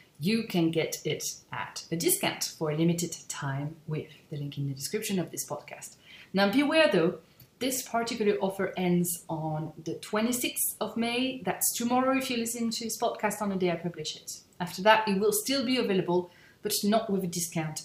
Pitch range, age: 170-220 Hz, 30-49